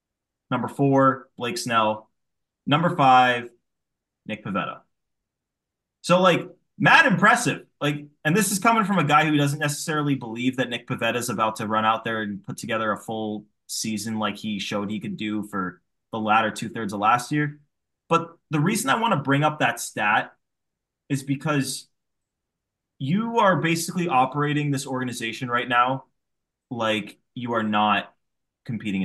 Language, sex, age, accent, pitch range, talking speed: English, male, 20-39, American, 115-155 Hz, 160 wpm